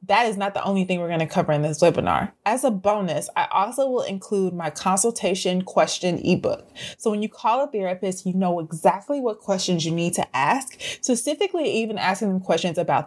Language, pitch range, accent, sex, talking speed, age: English, 170-215 Hz, American, female, 200 wpm, 20-39